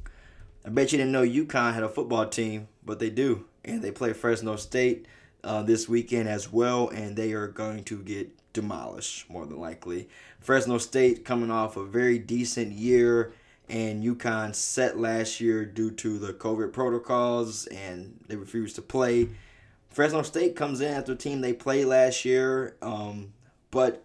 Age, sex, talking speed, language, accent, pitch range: 20-39, male, 170 wpm, English, American, 110-125 Hz